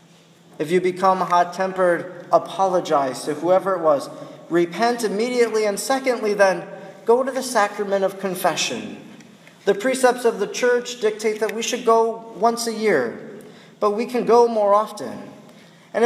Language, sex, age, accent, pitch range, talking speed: English, male, 40-59, American, 175-225 Hz, 150 wpm